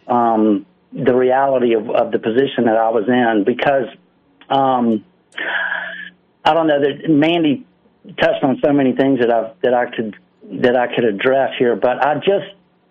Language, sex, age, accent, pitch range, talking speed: English, male, 50-69, American, 115-140 Hz, 165 wpm